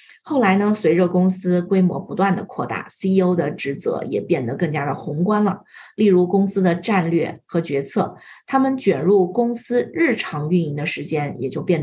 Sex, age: female, 20-39